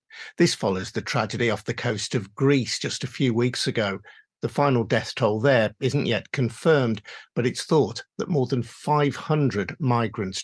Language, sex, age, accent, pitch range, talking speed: English, male, 50-69, British, 110-140 Hz, 170 wpm